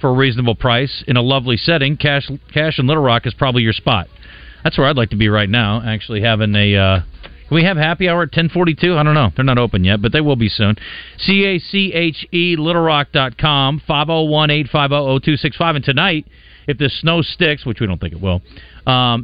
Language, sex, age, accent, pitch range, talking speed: English, male, 40-59, American, 115-155 Hz, 200 wpm